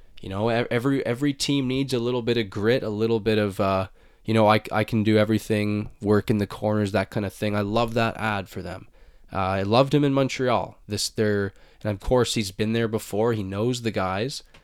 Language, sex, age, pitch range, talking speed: English, male, 20-39, 105-130 Hz, 230 wpm